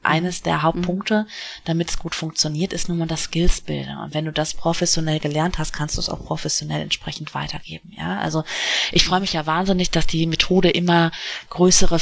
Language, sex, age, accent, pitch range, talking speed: German, female, 30-49, German, 145-170 Hz, 185 wpm